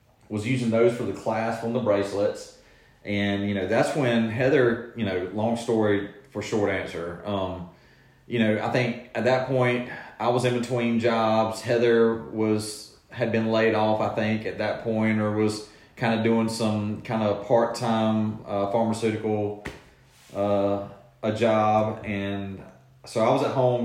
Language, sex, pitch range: English, male, 100-120 Hz